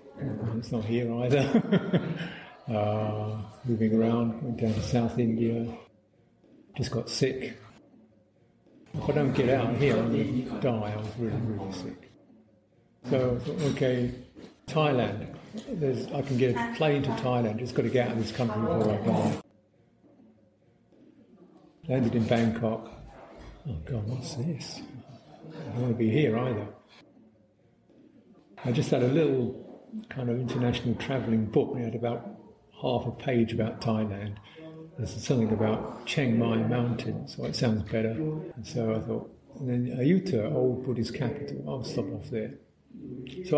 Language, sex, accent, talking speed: English, male, British, 155 wpm